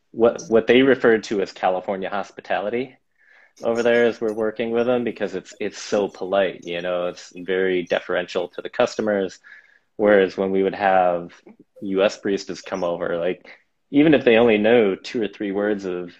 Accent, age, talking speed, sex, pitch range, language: American, 20-39, 180 wpm, male, 95-120 Hz, English